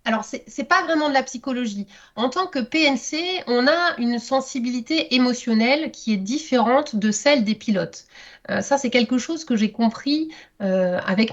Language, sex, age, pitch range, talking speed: French, female, 30-49, 215-275 Hz, 180 wpm